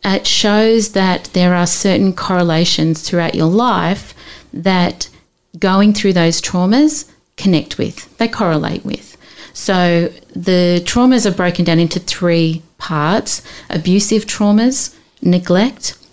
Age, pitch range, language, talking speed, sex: 40-59, 165-205 Hz, English, 120 wpm, female